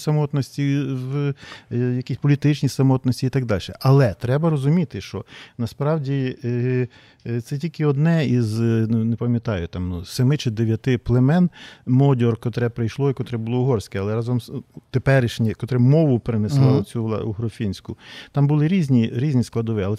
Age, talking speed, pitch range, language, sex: 40-59, 130 wpm, 115-145 Hz, Ukrainian, male